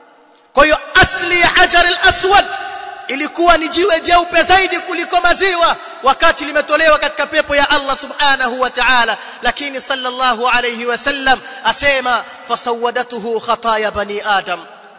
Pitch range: 235-330 Hz